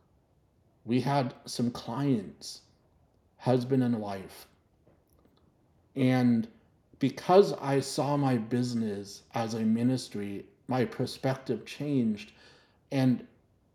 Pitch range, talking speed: 105-135 Hz, 85 wpm